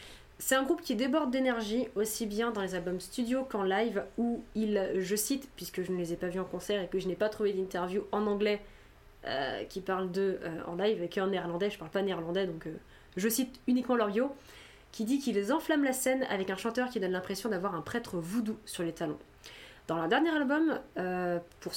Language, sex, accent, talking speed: French, female, French, 225 wpm